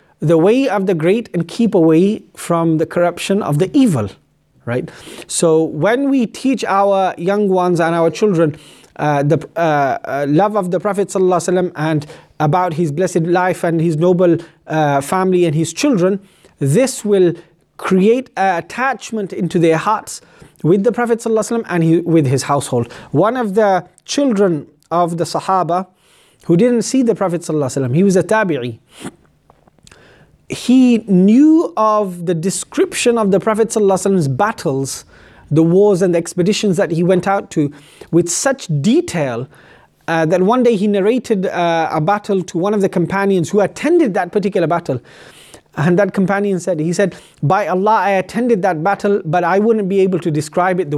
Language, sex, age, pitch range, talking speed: English, male, 30-49, 165-210 Hz, 165 wpm